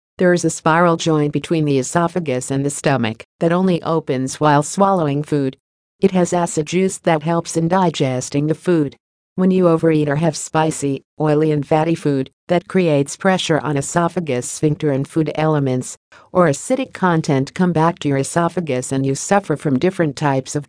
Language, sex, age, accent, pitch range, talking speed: English, female, 50-69, American, 140-170 Hz, 175 wpm